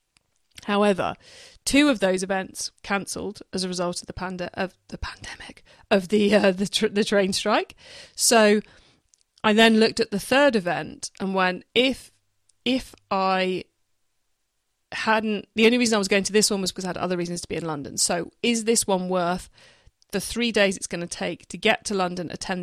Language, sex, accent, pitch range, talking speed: English, female, British, 180-215 Hz, 195 wpm